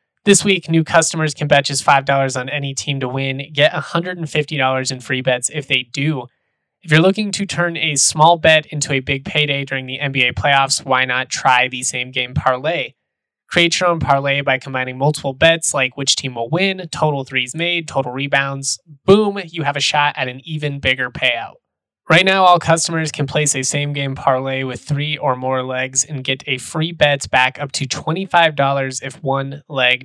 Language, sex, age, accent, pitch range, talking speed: English, male, 20-39, American, 130-155 Hz, 195 wpm